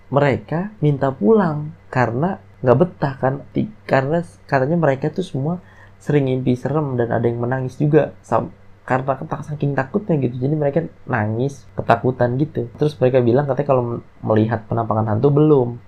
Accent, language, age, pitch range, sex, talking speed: native, Indonesian, 20-39, 110-140 Hz, male, 150 wpm